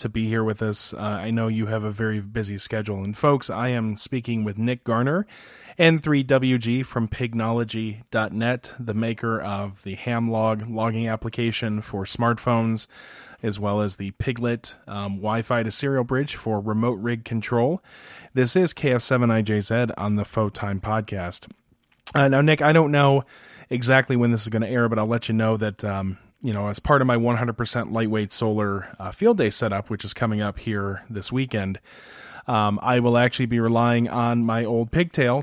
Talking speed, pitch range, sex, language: 180 wpm, 105-120 Hz, male, English